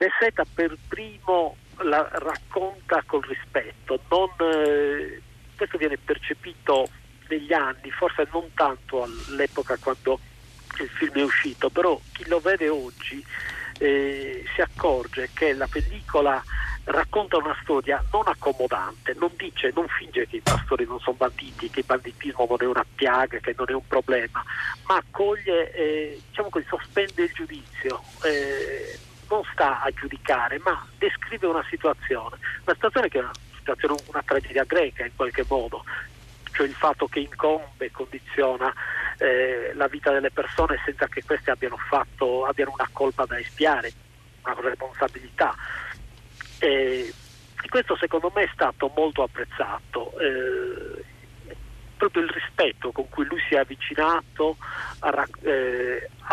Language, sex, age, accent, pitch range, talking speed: Italian, male, 50-69, native, 130-205 Hz, 145 wpm